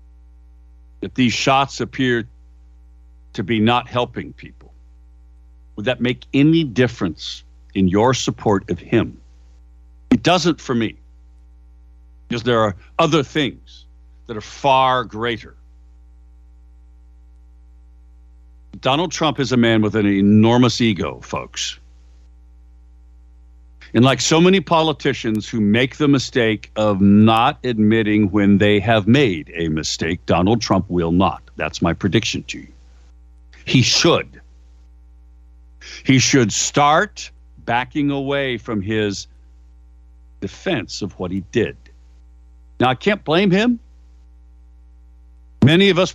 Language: English